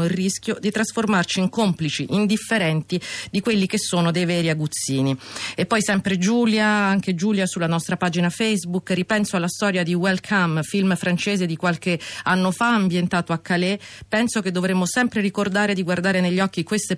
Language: Italian